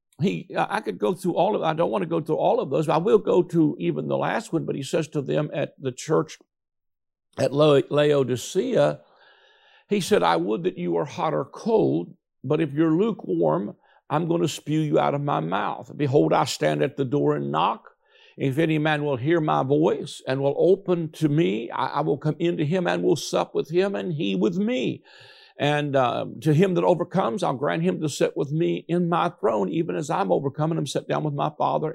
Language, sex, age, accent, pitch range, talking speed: English, male, 60-79, American, 145-185 Hz, 225 wpm